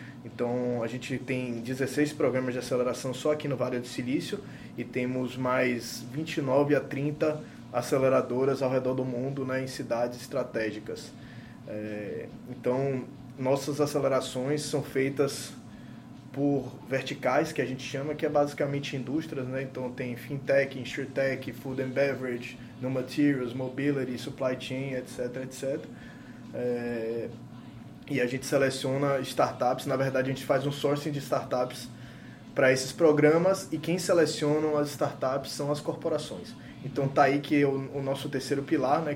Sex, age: male, 20-39